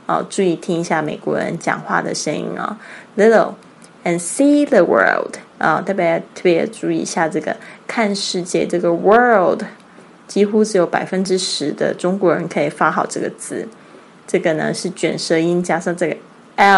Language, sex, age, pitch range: Chinese, female, 20-39, 170-205 Hz